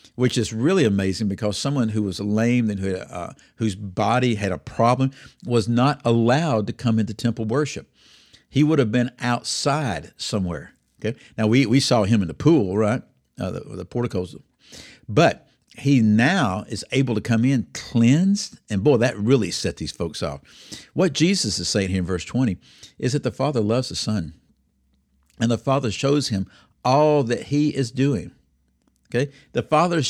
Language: English